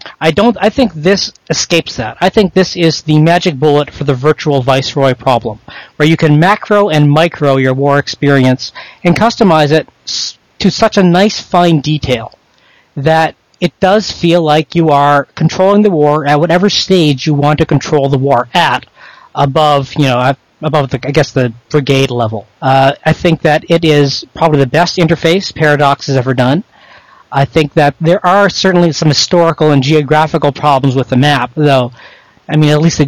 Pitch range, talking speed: 140-170 Hz, 185 wpm